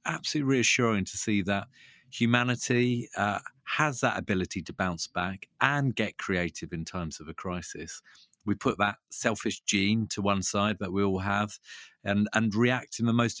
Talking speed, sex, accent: 175 wpm, male, British